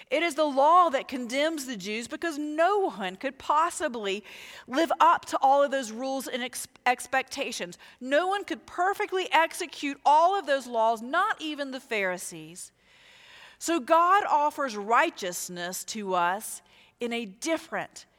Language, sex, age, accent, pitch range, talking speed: English, female, 40-59, American, 225-330 Hz, 145 wpm